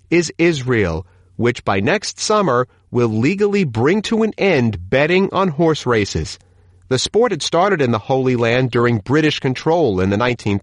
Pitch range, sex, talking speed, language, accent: 100-155 Hz, male, 165 wpm, English, American